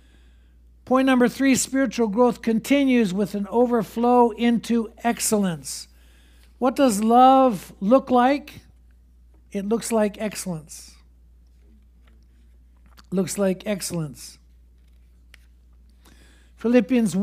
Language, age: English, 60-79